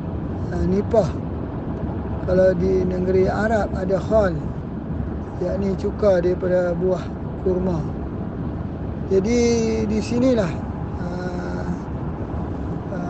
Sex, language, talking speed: male, Malay, 75 wpm